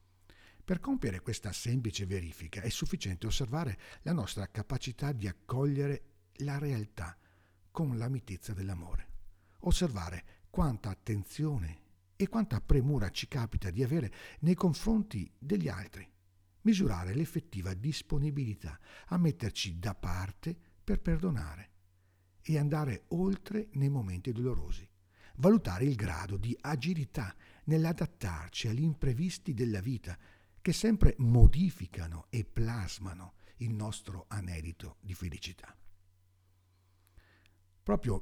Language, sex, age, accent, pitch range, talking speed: Italian, male, 60-79, native, 95-140 Hz, 110 wpm